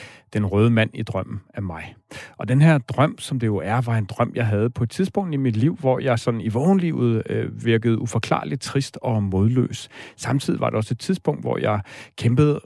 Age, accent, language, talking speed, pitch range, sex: 40-59, native, Danish, 220 wpm, 110-135 Hz, male